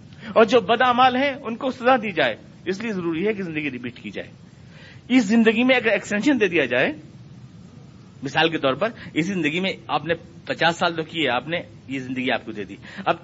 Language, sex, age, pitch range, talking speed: Urdu, male, 50-69, 140-210 Hz, 220 wpm